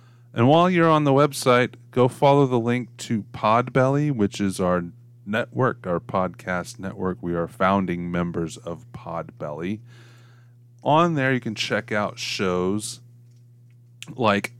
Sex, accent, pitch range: male, American, 100-125 Hz